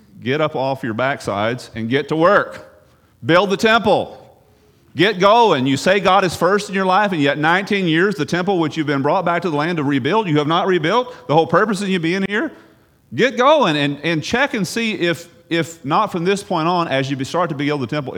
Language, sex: English, male